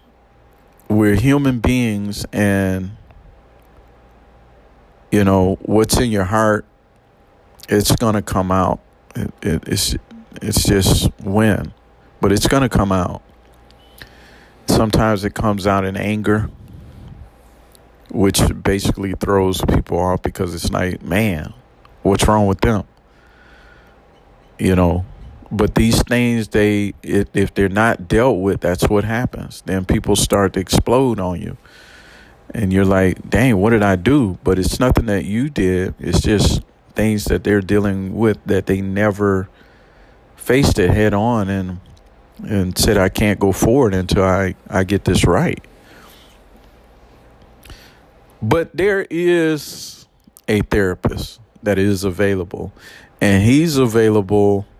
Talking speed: 130 wpm